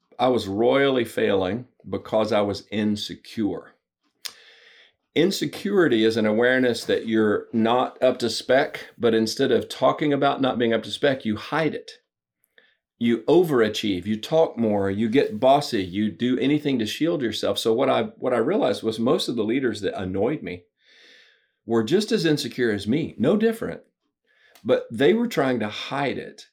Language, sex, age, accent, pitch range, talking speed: English, male, 40-59, American, 100-125 Hz, 165 wpm